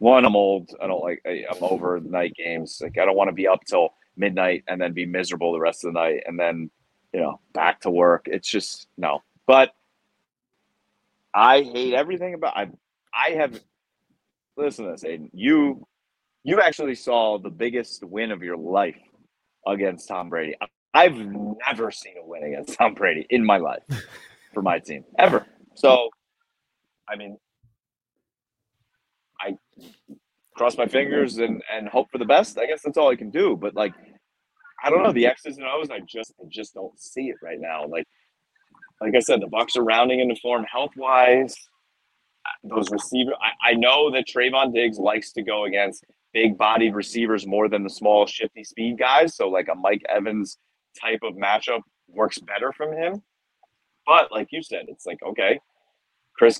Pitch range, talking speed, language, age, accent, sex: 100-140 Hz, 180 wpm, English, 30-49, American, male